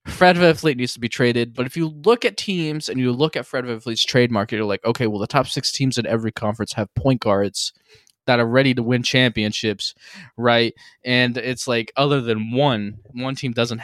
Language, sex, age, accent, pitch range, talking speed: English, male, 20-39, American, 115-145 Hz, 220 wpm